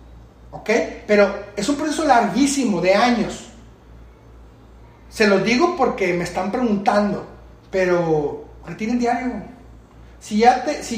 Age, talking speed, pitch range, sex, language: 30-49, 120 wpm, 165-235 Hz, male, Spanish